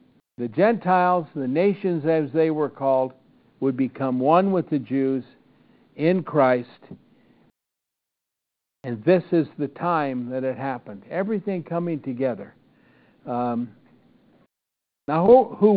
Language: English